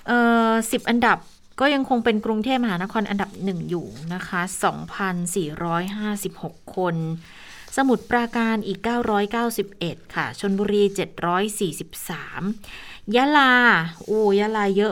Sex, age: female, 20-39